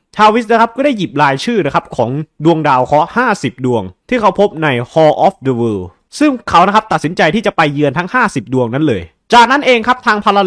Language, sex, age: Thai, male, 20-39